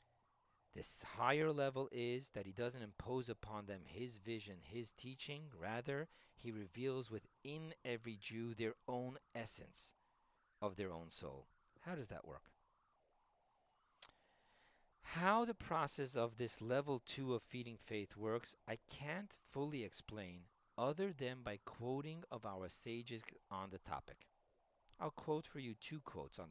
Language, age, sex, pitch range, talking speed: English, 40-59, male, 110-140 Hz, 145 wpm